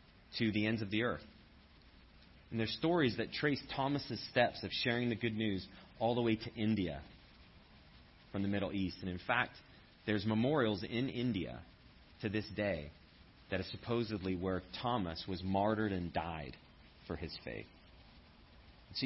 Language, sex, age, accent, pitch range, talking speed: English, male, 30-49, American, 95-120 Hz, 155 wpm